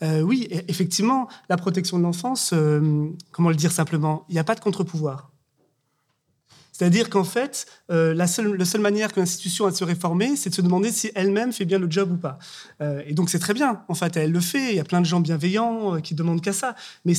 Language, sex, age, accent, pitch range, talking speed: French, male, 30-49, French, 165-205 Hz, 235 wpm